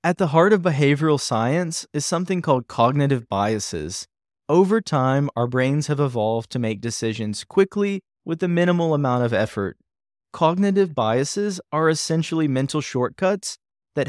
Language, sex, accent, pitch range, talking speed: English, male, American, 115-155 Hz, 145 wpm